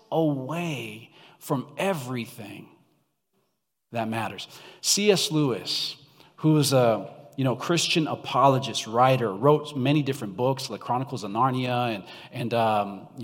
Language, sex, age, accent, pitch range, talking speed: English, male, 40-59, American, 125-170 Hz, 115 wpm